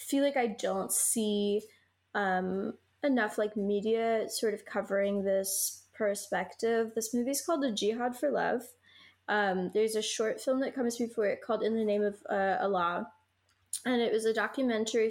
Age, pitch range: 20-39, 200-230 Hz